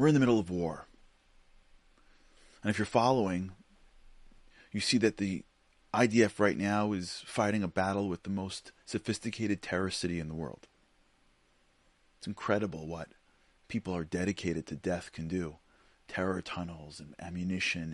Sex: male